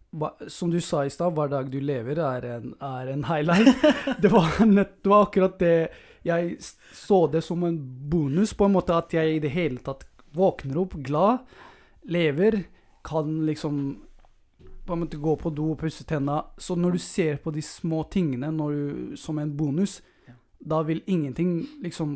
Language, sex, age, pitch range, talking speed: English, male, 20-39, 135-170 Hz, 170 wpm